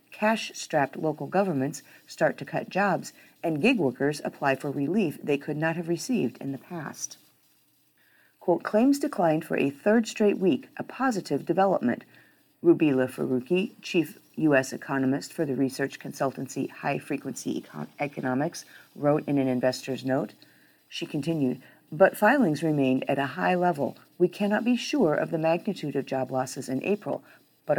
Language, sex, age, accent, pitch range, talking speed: English, female, 40-59, American, 135-200 Hz, 155 wpm